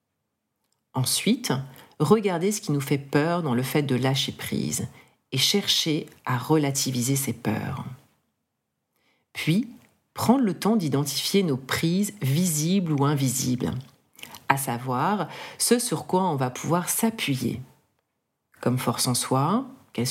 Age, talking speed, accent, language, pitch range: 40-59, 130 wpm, French, French, 130-170 Hz